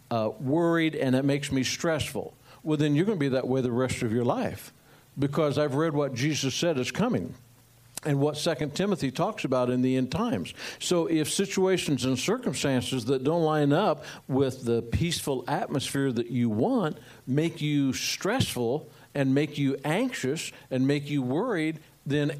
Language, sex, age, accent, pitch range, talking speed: English, male, 60-79, American, 130-165 Hz, 175 wpm